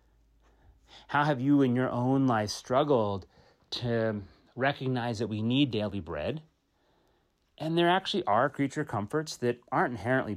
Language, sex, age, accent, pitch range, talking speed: English, male, 30-49, American, 105-145 Hz, 140 wpm